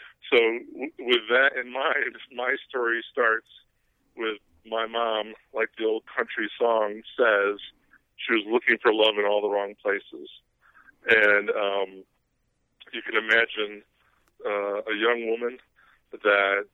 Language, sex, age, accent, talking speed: English, male, 50-69, American, 135 wpm